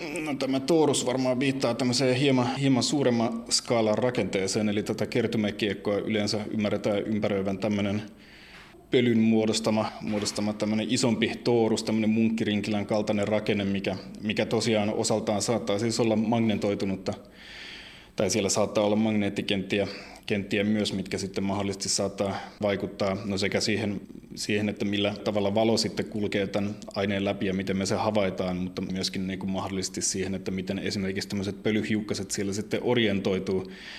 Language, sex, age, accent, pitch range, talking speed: Finnish, male, 20-39, native, 100-110 Hz, 140 wpm